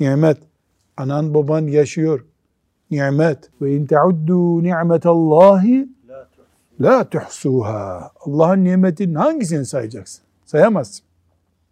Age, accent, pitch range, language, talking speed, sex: 60-79, native, 140-190 Hz, Turkish, 80 wpm, male